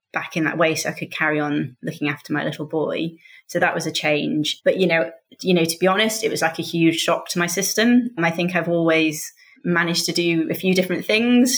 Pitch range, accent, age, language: 160-180 Hz, British, 30-49, English